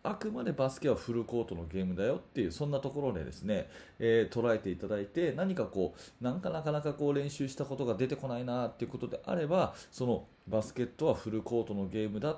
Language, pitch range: Japanese, 100-140 Hz